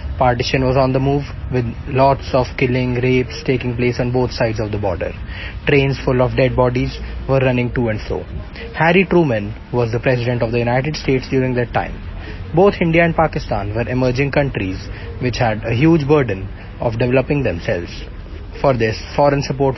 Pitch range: 110-150 Hz